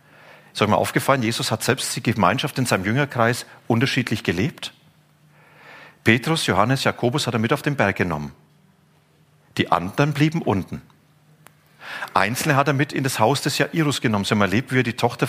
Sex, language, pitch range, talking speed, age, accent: male, German, 115-155 Hz, 180 wpm, 40-59, German